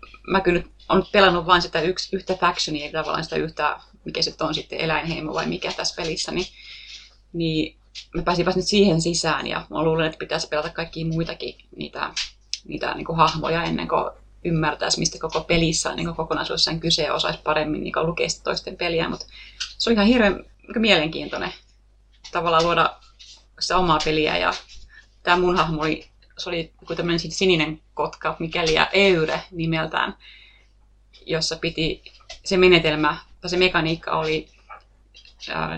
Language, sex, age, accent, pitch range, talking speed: Finnish, female, 30-49, native, 160-185 Hz, 155 wpm